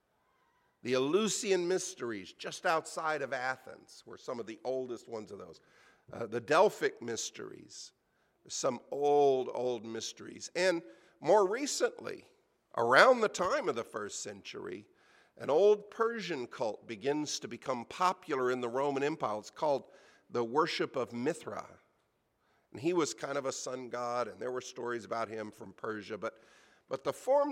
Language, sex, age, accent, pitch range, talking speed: English, male, 50-69, American, 120-185 Hz, 155 wpm